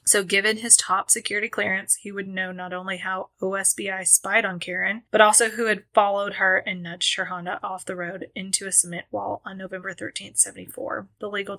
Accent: American